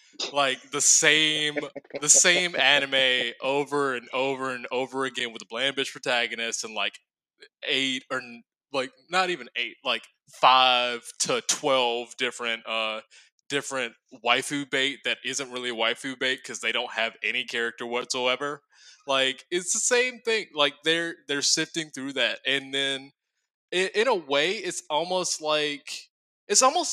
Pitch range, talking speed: 125-160 Hz, 150 wpm